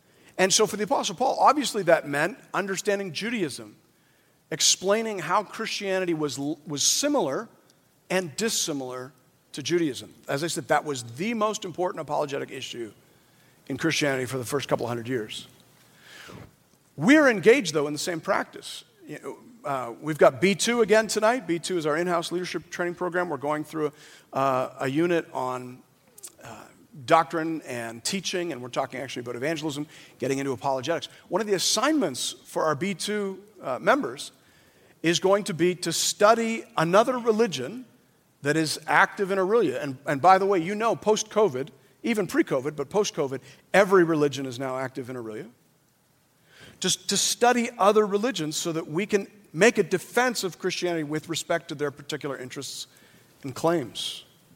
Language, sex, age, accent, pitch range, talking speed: English, male, 50-69, American, 145-200 Hz, 155 wpm